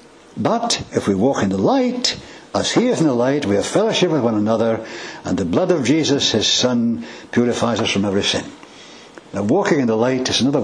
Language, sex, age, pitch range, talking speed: English, male, 60-79, 130-190 Hz, 215 wpm